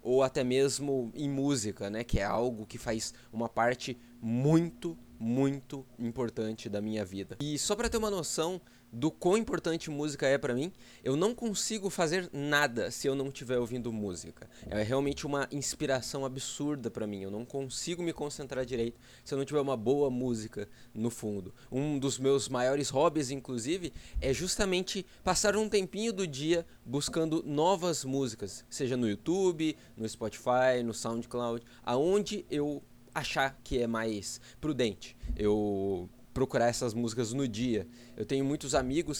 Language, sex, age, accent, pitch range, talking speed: Portuguese, male, 20-39, Brazilian, 120-150 Hz, 160 wpm